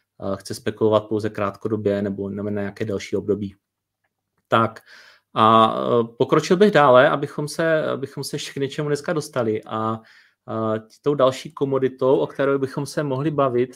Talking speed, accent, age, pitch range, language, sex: 145 wpm, native, 30-49, 115-140 Hz, Czech, male